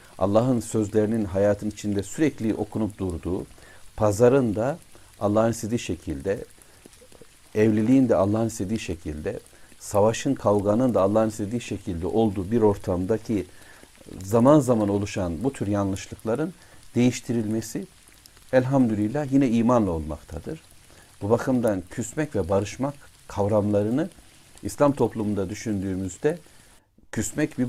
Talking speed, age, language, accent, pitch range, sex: 105 wpm, 60-79, Turkish, native, 95-115 Hz, male